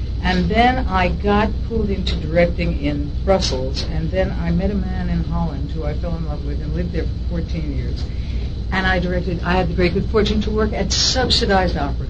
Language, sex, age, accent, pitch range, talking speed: English, female, 60-79, American, 70-85 Hz, 215 wpm